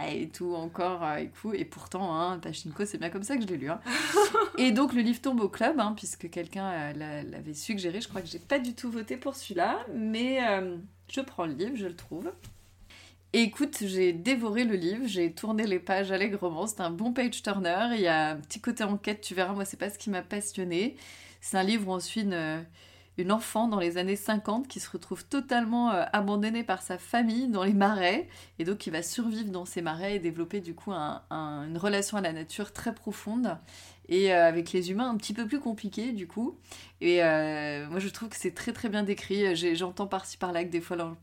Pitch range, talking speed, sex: 175-220 Hz, 230 wpm, female